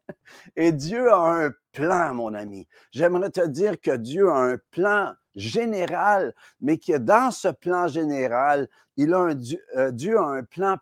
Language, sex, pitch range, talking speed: French, male, 150-215 Hz, 160 wpm